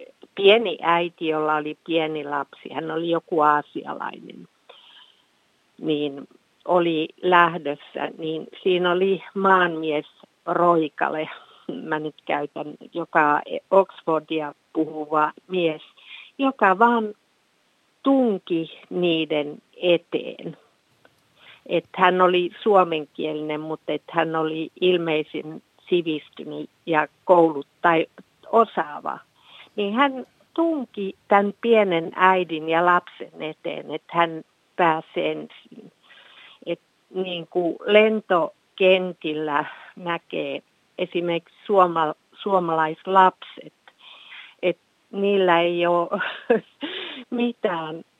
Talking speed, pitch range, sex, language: 85 wpm, 155-195 Hz, female, Finnish